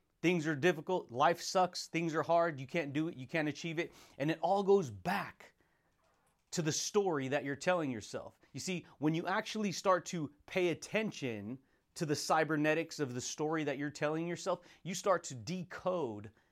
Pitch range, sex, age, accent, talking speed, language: 140-175 Hz, male, 30-49, American, 185 wpm, English